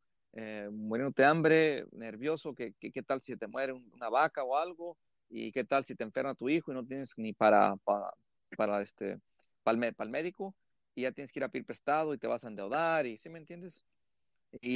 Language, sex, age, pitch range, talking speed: English, male, 40-59, 110-150 Hz, 230 wpm